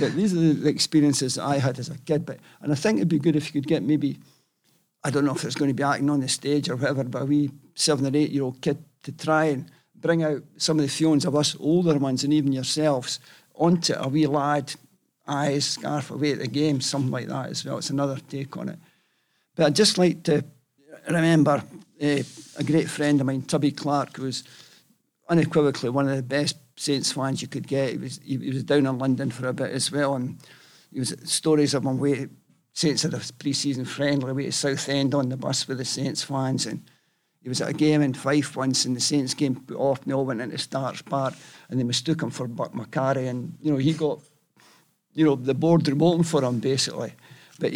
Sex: male